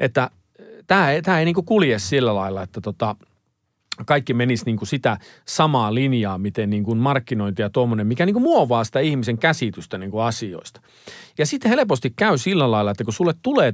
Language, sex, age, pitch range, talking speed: Finnish, male, 40-59, 110-160 Hz, 165 wpm